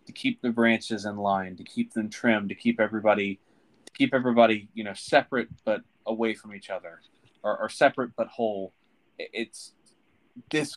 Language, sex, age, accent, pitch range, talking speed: English, male, 20-39, American, 100-120 Hz, 175 wpm